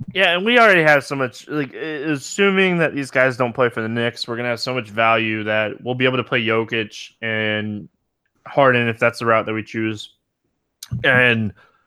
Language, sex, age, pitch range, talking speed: English, male, 20-39, 115-145 Hz, 200 wpm